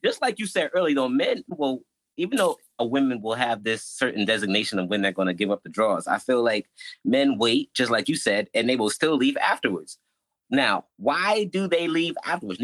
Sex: male